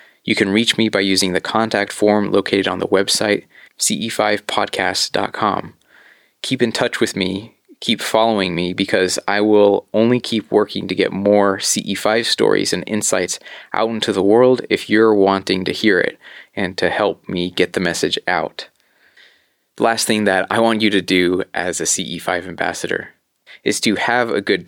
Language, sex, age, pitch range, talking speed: English, male, 20-39, 95-110 Hz, 175 wpm